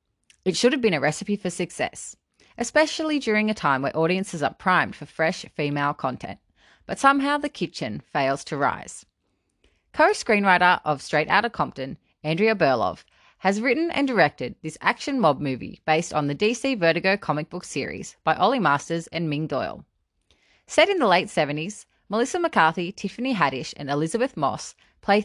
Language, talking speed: English, 165 wpm